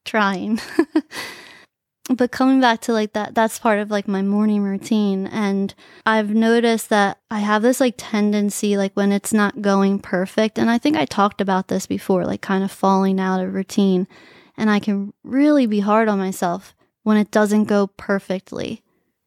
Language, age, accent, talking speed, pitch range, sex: English, 20-39, American, 180 wpm, 195-225 Hz, female